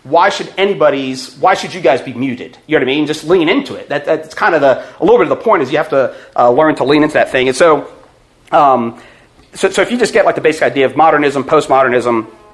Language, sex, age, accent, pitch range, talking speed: English, male, 30-49, American, 130-175 Hz, 270 wpm